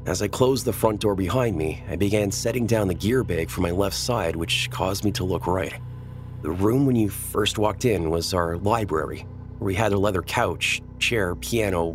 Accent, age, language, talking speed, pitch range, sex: American, 30-49, English, 215 wpm, 85-110 Hz, male